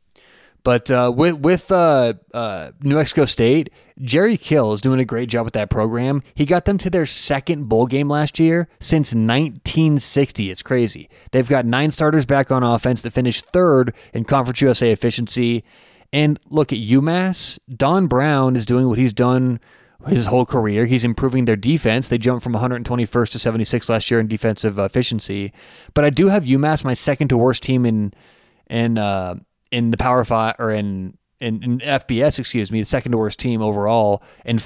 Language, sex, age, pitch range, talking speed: English, male, 20-39, 115-150 Hz, 180 wpm